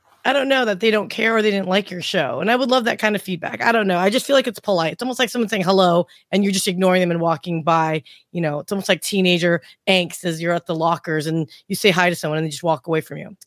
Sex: female